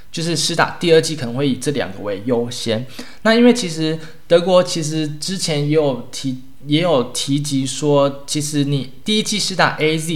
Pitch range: 130-170 Hz